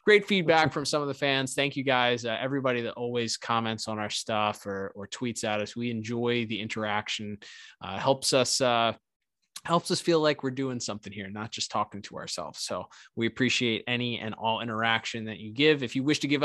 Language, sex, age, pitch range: English, male, 20-39, 115-145 Hz